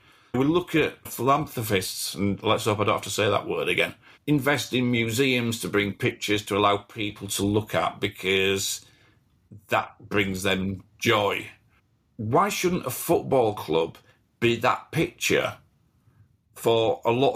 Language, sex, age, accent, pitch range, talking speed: English, male, 50-69, British, 105-130 Hz, 150 wpm